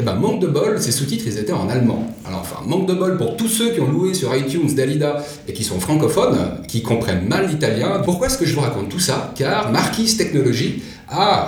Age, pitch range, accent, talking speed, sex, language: 40-59, 120-180 Hz, French, 220 wpm, male, French